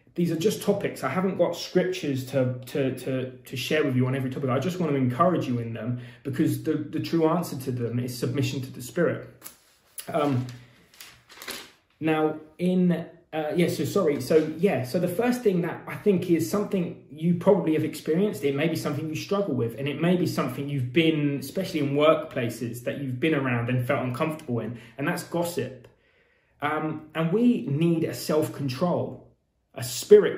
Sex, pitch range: male, 130-170 Hz